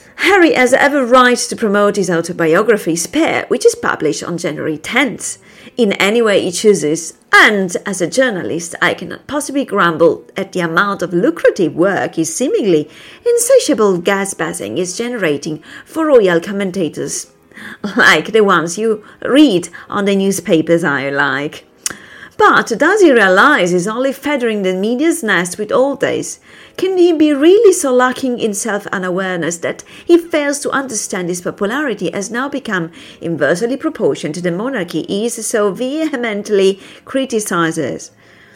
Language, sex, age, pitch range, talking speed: English, female, 40-59, 175-270 Hz, 150 wpm